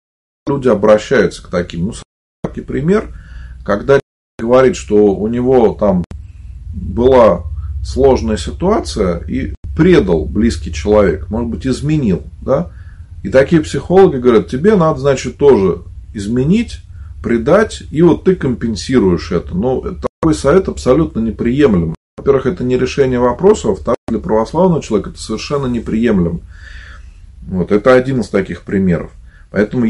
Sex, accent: male, native